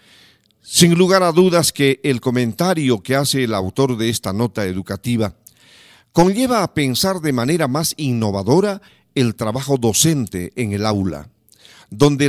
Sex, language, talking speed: male, Spanish, 140 wpm